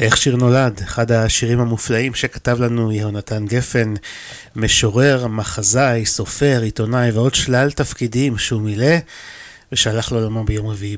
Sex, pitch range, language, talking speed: male, 110-135 Hz, Hebrew, 125 wpm